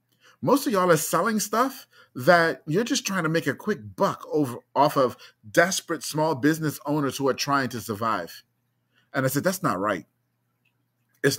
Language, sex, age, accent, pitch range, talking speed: English, male, 30-49, American, 130-170 Hz, 180 wpm